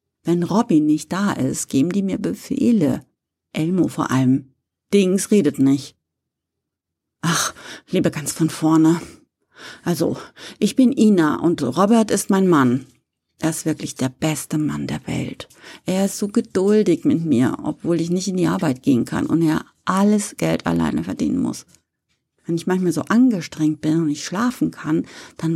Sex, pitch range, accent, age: female, 150-195 Hz, German, 50-69